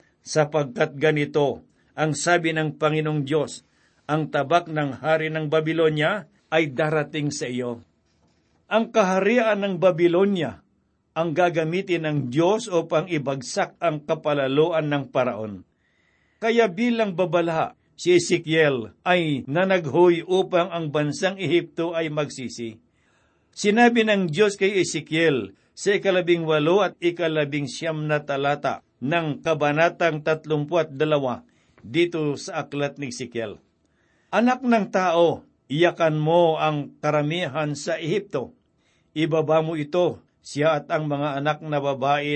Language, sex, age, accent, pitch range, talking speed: Filipino, male, 60-79, native, 145-175 Hz, 120 wpm